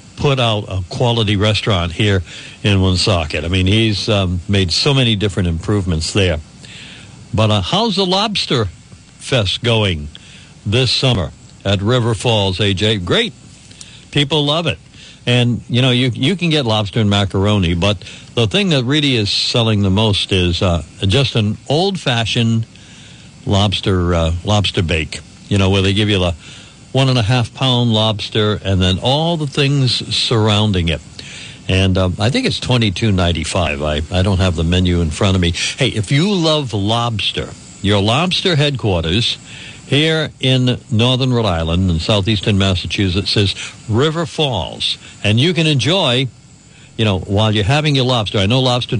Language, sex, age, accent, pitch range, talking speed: English, male, 60-79, American, 95-130 Hz, 165 wpm